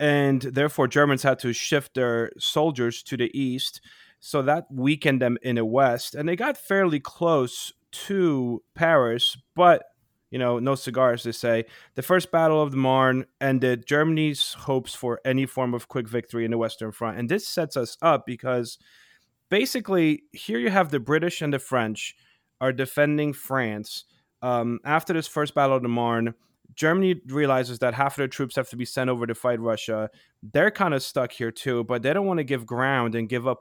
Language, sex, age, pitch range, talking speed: English, male, 30-49, 120-150 Hz, 195 wpm